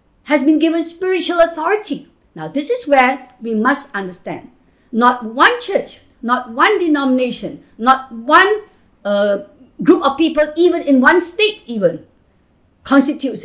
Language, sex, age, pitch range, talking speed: English, female, 50-69, 235-330 Hz, 135 wpm